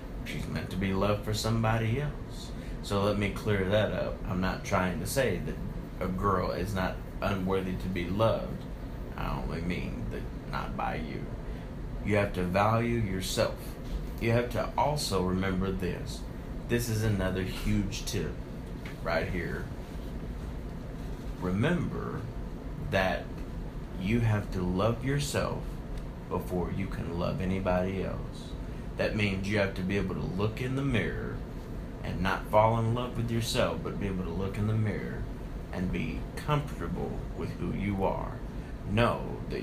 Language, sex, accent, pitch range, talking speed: English, male, American, 90-110 Hz, 155 wpm